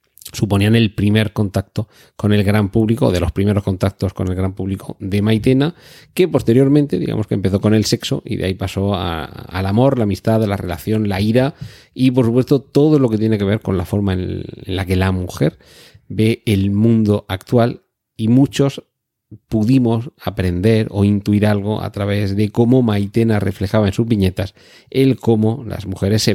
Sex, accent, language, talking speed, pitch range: male, Spanish, Spanish, 190 wpm, 100-120 Hz